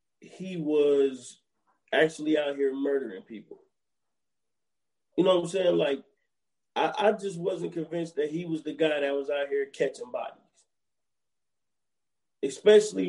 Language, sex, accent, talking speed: English, male, American, 140 wpm